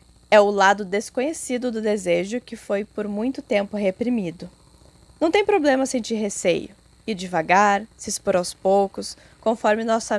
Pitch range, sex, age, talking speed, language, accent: 195-245 Hz, female, 10-29, 145 wpm, Portuguese, Brazilian